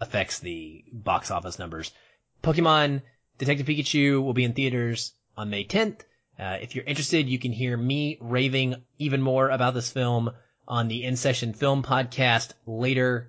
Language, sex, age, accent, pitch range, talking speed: English, male, 30-49, American, 110-140 Hz, 165 wpm